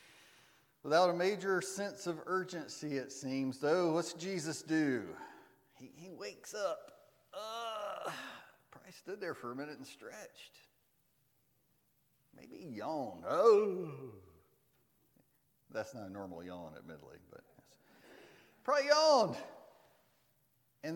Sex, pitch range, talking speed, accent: male, 135-190 Hz, 110 wpm, American